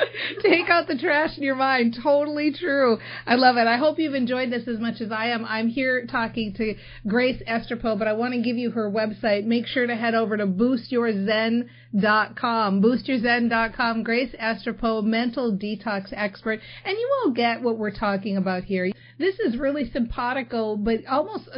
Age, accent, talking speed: 40-59, American, 180 wpm